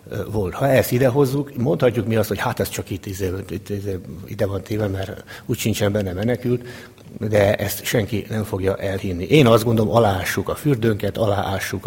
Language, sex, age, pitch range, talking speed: Hungarian, male, 60-79, 100-120 Hz, 160 wpm